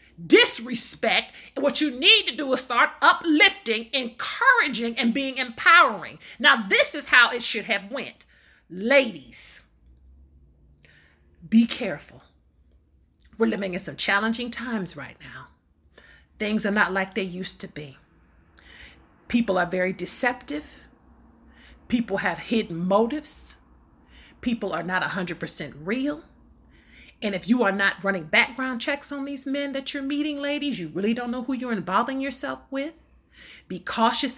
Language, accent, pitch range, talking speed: English, American, 180-255 Hz, 140 wpm